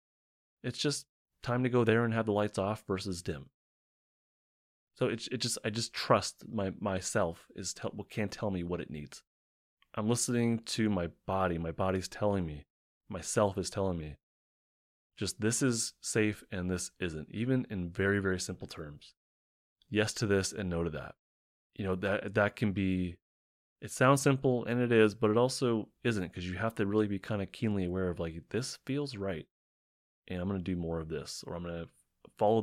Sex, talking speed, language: male, 200 wpm, English